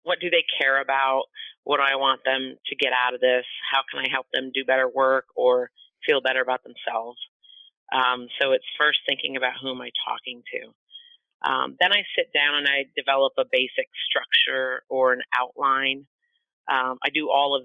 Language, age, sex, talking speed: English, 30-49, female, 195 wpm